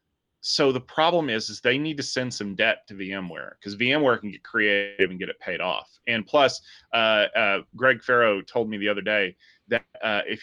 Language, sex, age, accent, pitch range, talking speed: English, male, 30-49, American, 105-150 Hz, 215 wpm